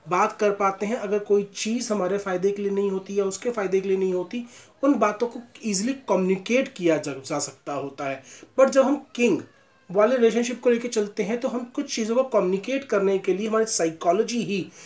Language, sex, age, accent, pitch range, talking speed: Hindi, male, 30-49, native, 165-220 Hz, 210 wpm